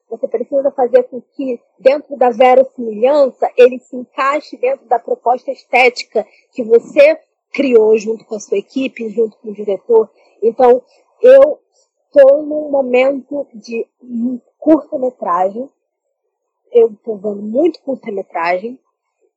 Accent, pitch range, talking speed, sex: Brazilian, 200-270 Hz, 125 wpm, female